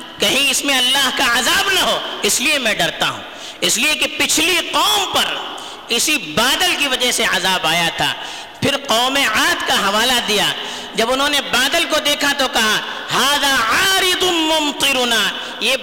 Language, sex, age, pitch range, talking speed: Urdu, female, 50-69, 250-335 Hz, 170 wpm